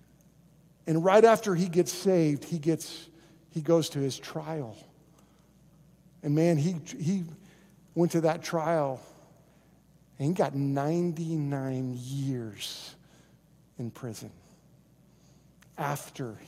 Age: 50-69